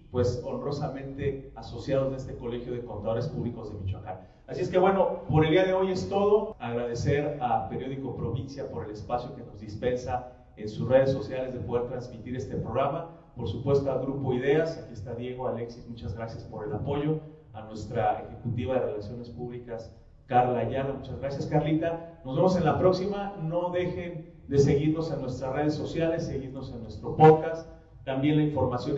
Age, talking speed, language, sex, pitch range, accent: 40-59, 180 wpm, Spanish, male, 120-150 Hz, Mexican